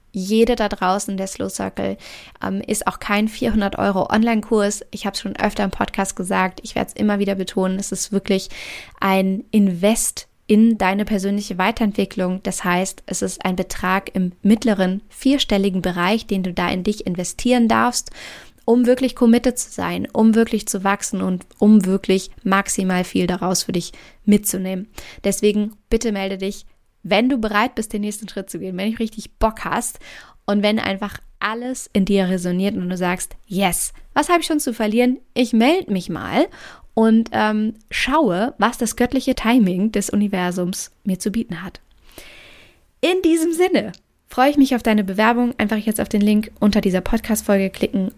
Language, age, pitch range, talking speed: German, 20-39, 190-225 Hz, 175 wpm